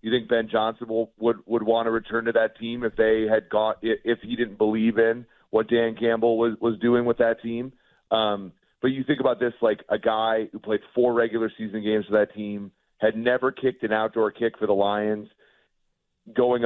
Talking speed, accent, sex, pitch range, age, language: 215 wpm, American, male, 110-120 Hz, 40-59, English